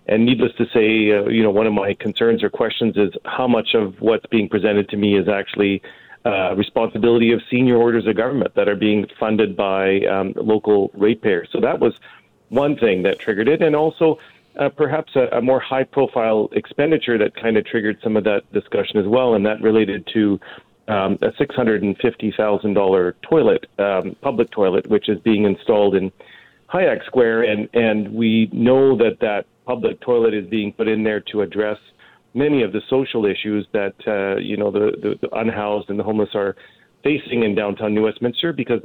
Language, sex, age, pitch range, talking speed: English, male, 40-59, 105-120 Hz, 190 wpm